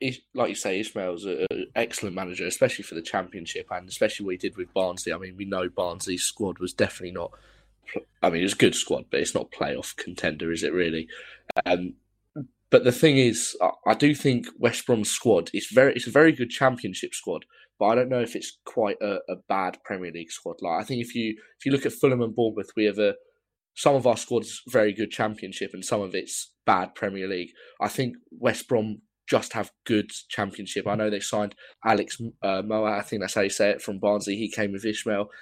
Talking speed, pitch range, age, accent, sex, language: 220 wpm, 100-125 Hz, 20-39, British, male, English